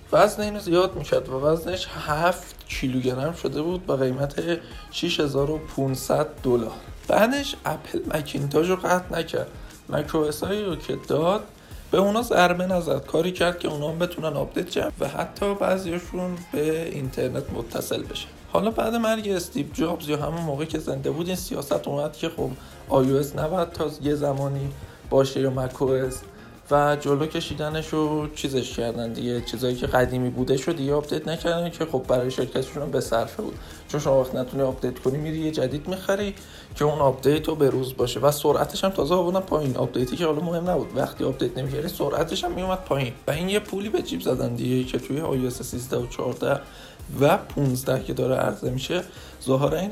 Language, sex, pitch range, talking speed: Persian, male, 130-175 Hz, 170 wpm